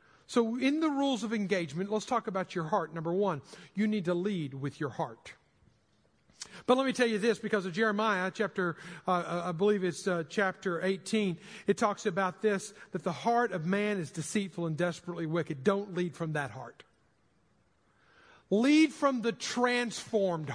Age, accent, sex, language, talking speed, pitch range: 50-69, American, male, English, 175 wpm, 185-250 Hz